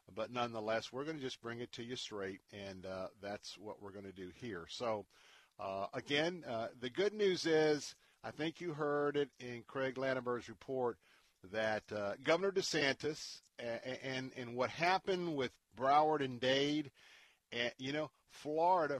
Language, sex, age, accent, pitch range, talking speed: English, male, 50-69, American, 110-140 Hz, 165 wpm